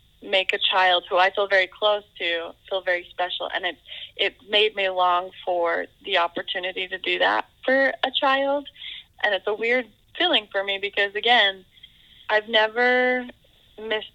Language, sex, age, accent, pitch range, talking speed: English, female, 20-39, American, 185-215 Hz, 165 wpm